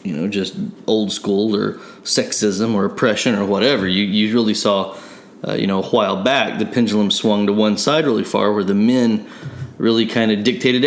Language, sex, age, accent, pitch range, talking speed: English, male, 20-39, American, 100-120 Hz, 200 wpm